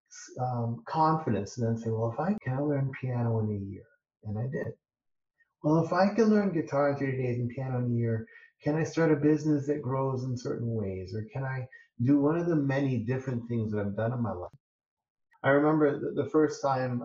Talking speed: 220 wpm